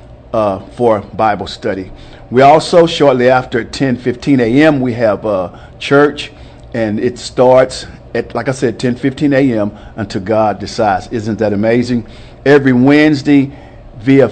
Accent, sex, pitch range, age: American, male, 115-130 Hz, 50-69